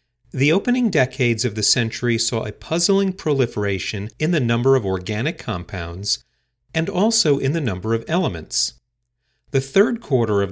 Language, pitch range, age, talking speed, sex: English, 110-145 Hz, 40-59, 155 wpm, male